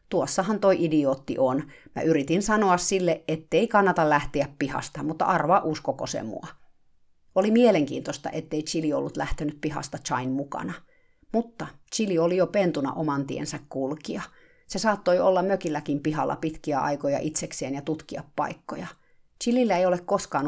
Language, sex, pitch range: Finnish, female, 145-190 Hz